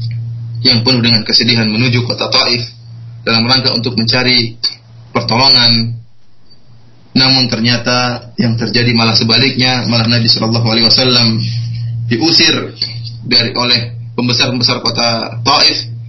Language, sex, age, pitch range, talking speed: Malay, male, 20-39, 115-125 Hz, 110 wpm